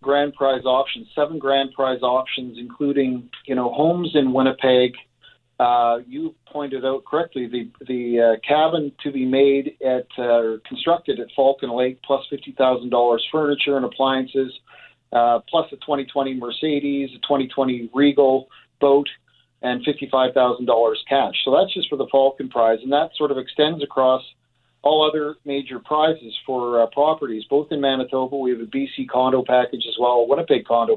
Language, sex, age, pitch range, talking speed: English, male, 50-69, 125-145 Hz, 170 wpm